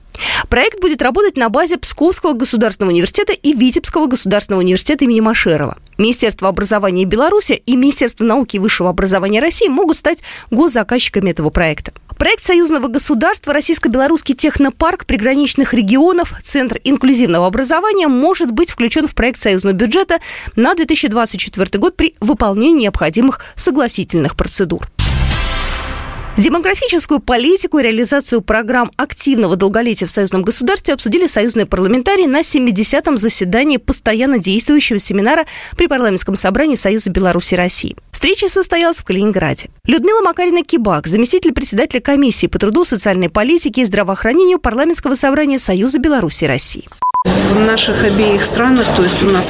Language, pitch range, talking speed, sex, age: Russian, 200-295 Hz, 130 wpm, female, 20-39